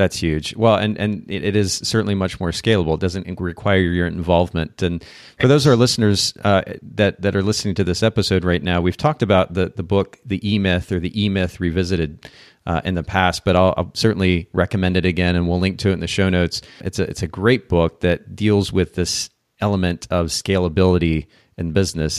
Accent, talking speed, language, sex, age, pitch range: American, 215 wpm, English, male, 30-49, 90-105 Hz